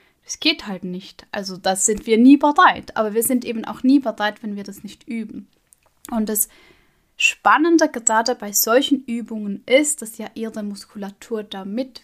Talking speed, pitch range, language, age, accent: 175 wpm, 205-250 Hz, German, 10-29, German